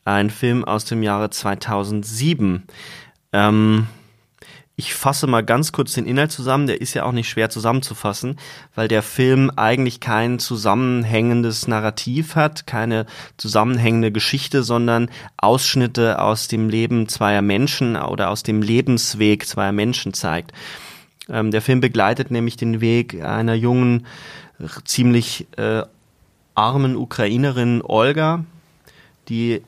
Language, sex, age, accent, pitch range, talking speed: German, male, 20-39, German, 110-135 Hz, 125 wpm